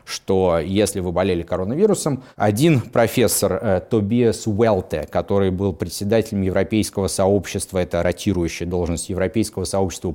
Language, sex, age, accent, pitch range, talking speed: Russian, male, 30-49, native, 90-115 Hz, 110 wpm